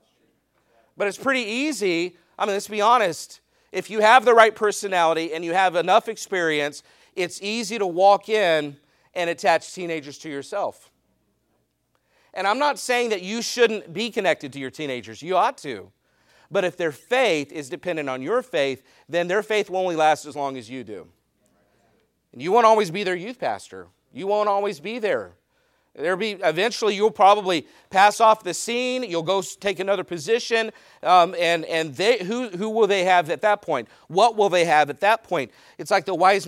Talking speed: 190 wpm